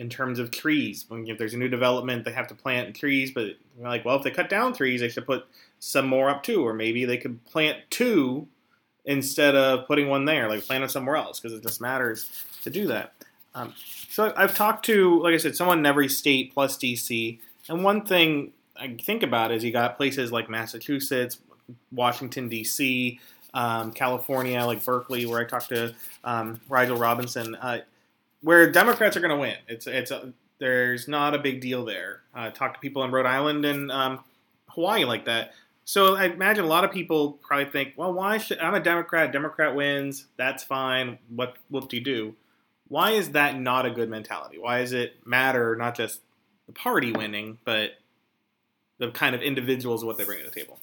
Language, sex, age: English, male, 30-49